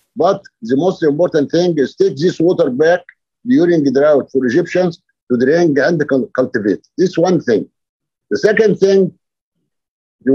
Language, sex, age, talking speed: Arabic, male, 50-69, 150 wpm